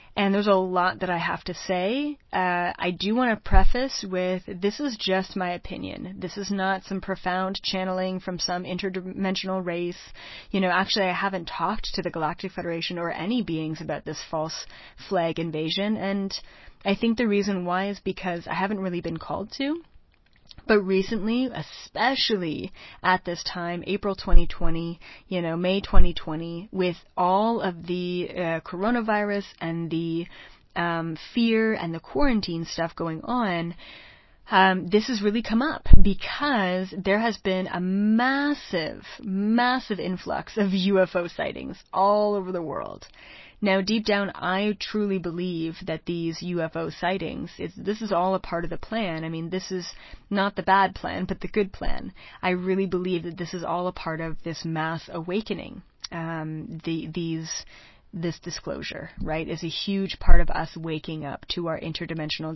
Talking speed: 165 wpm